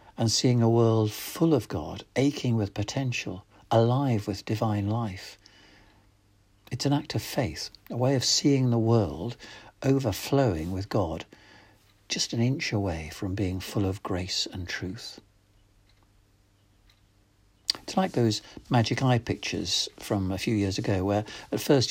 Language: English